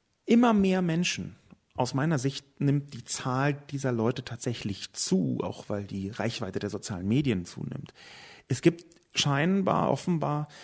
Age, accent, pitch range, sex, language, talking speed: 40-59, German, 110-155 Hz, male, German, 140 wpm